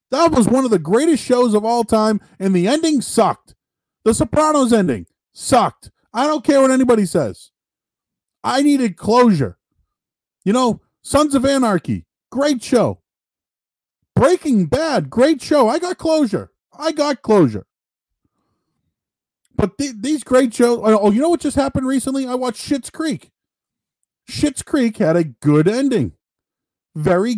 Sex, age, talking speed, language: male, 40-59, 145 wpm, English